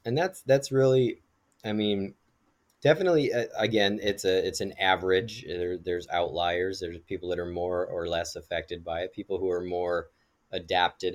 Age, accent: 30-49, American